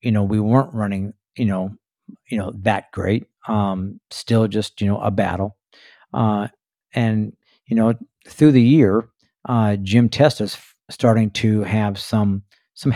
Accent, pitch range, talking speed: American, 100-115 Hz, 160 wpm